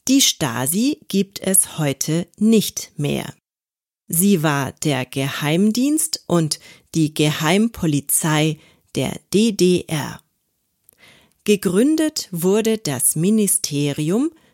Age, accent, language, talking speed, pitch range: 40-59, German, German, 85 wpm, 150-215 Hz